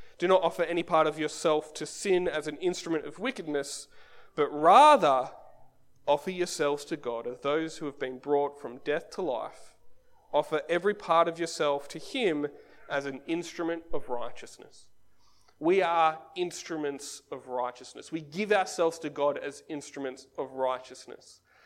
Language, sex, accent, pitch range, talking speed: English, male, Australian, 140-185 Hz, 155 wpm